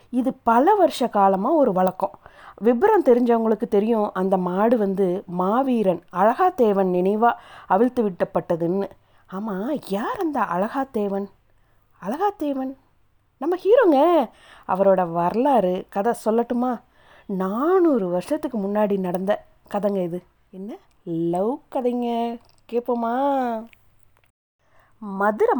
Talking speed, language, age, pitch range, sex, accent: 95 wpm, Tamil, 30-49, 180-240 Hz, female, native